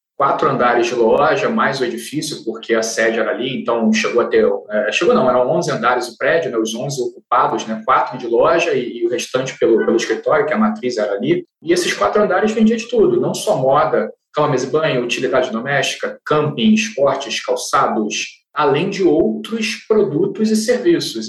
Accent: Brazilian